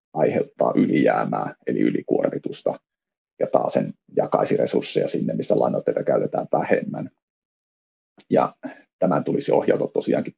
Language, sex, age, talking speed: Finnish, male, 30-49, 110 wpm